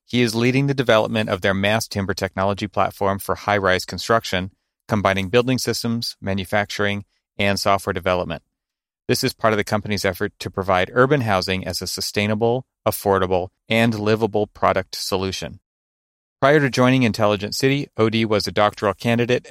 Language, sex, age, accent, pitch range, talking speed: English, male, 30-49, American, 95-115 Hz, 155 wpm